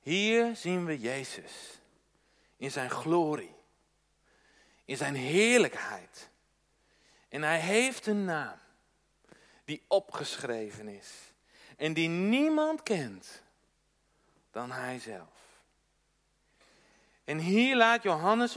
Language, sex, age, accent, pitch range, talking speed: Dutch, male, 40-59, Dutch, 145-215 Hz, 95 wpm